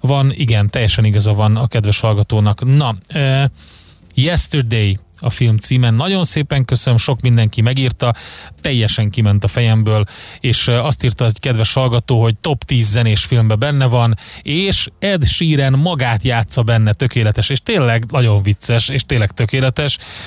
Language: Hungarian